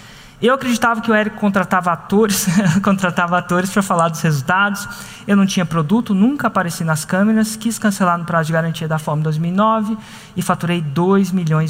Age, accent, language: 20-39, Brazilian, Portuguese